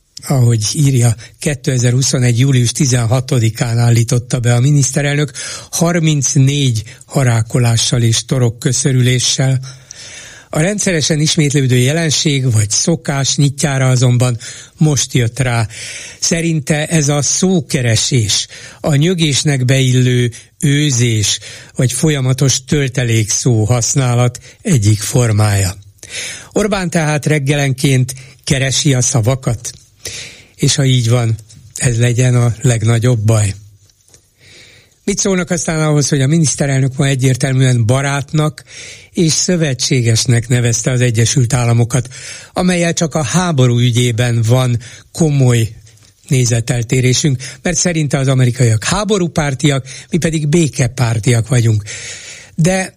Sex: male